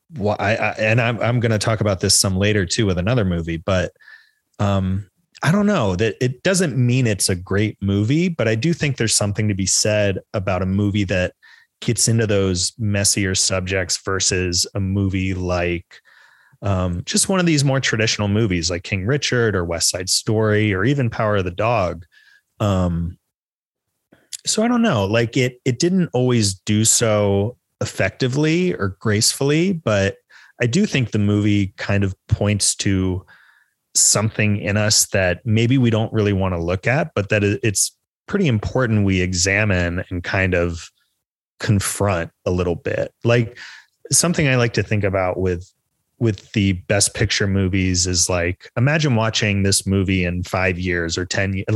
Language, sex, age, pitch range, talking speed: English, male, 30-49, 95-120 Hz, 175 wpm